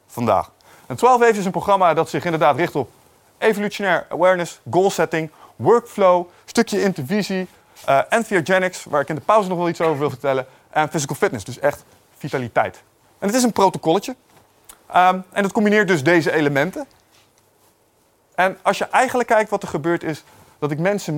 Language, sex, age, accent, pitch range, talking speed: Dutch, male, 20-39, Dutch, 145-210 Hz, 180 wpm